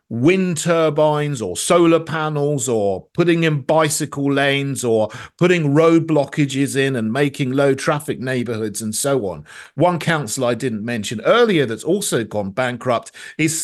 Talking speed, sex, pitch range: 150 wpm, male, 125-170 Hz